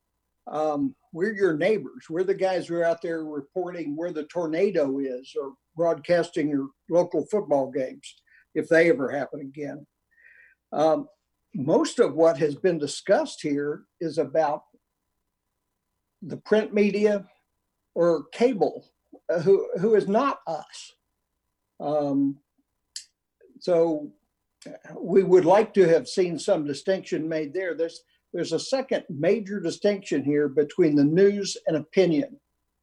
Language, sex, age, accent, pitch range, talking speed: English, male, 60-79, American, 145-195 Hz, 130 wpm